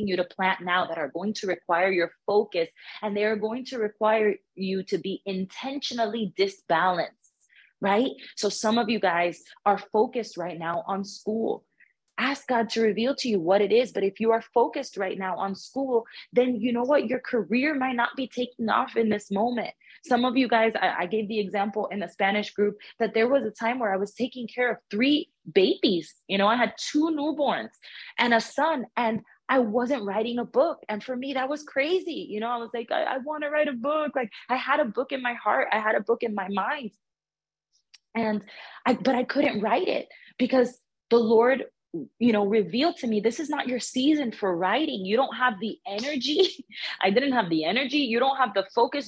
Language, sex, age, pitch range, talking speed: English, female, 20-39, 195-250 Hz, 215 wpm